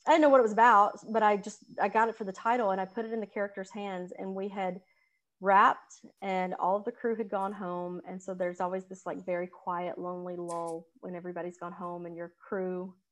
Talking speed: 240 wpm